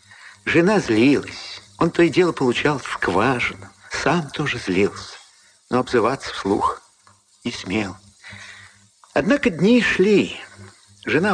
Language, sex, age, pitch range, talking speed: Russian, male, 50-69, 100-150 Hz, 105 wpm